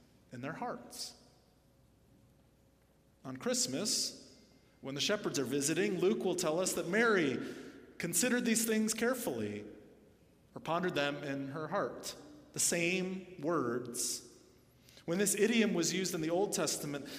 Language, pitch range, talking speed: English, 140-200 Hz, 135 wpm